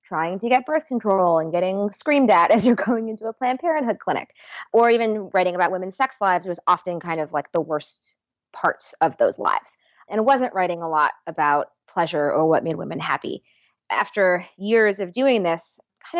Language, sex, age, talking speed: English, female, 20-39, 195 wpm